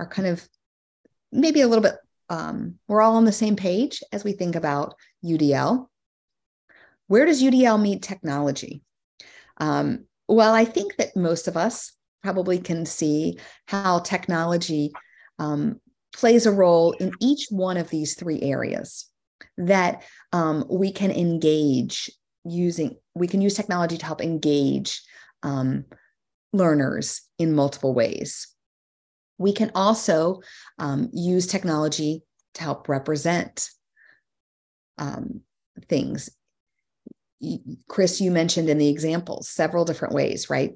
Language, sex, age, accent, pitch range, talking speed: English, female, 30-49, American, 150-190 Hz, 130 wpm